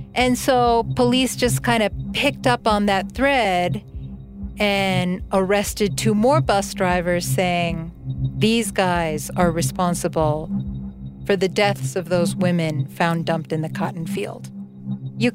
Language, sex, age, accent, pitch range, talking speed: English, female, 40-59, American, 170-210 Hz, 135 wpm